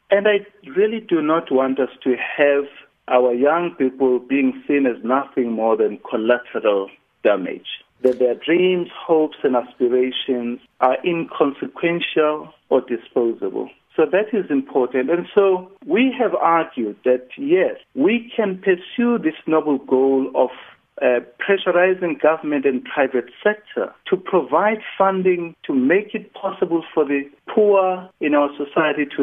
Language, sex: English, male